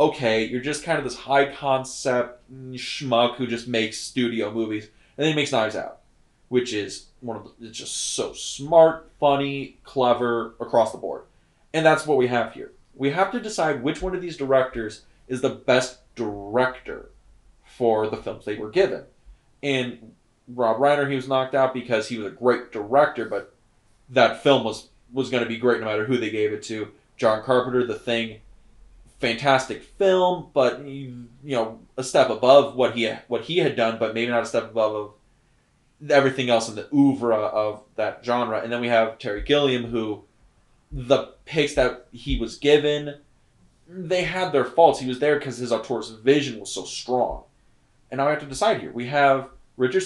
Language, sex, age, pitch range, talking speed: English, male, 20-39, 115-140 Hz, 190 wpm